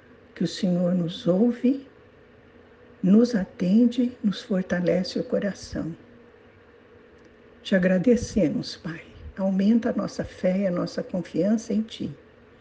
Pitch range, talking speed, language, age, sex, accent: 190-240 Hz, 115 wpm, Portuguese, 60-79, female, Brazilian